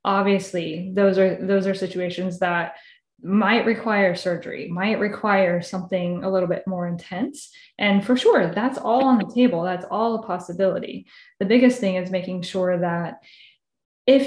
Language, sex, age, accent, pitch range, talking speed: English, female, 10-29, American, 190-250 Hz, 160 wpm